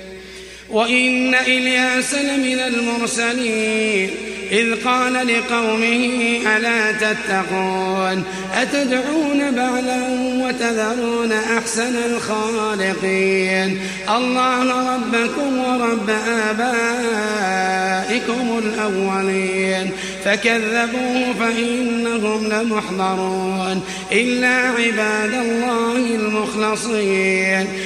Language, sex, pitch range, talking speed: Arabic, male, 190-235 Hz, 55 wpm